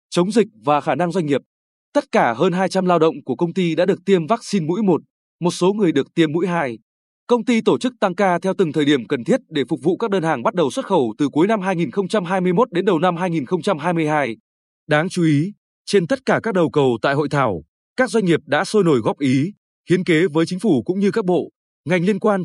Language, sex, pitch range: Vietnamese, male, 150-205 Hz